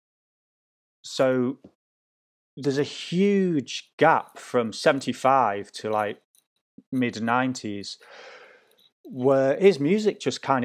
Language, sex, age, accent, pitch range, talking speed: English, male, 30-49, British, 120-165 Hz, 90 wpm